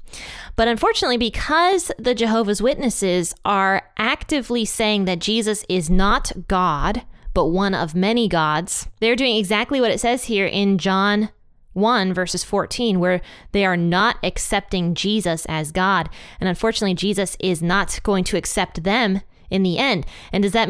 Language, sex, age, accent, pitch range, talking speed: English, female, 20-39, American, 180-215 Hz, 155 wpm